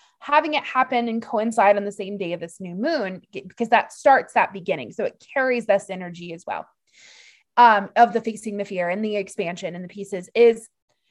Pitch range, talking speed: 215-305 Hz, 205 wpm